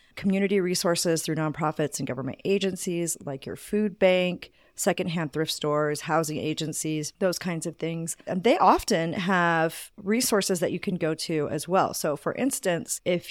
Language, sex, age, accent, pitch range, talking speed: English, female, 40-59, American, 155-195 Hz, 160 wpm